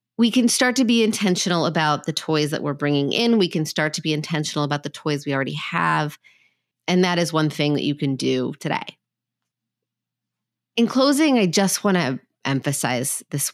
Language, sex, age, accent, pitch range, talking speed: English, female, 30-49, American, 140-190 Hz, 190 wpm